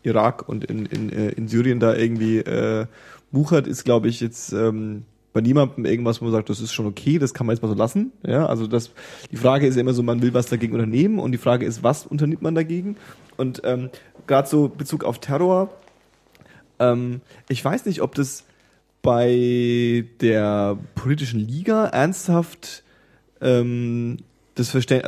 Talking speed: 175 wpm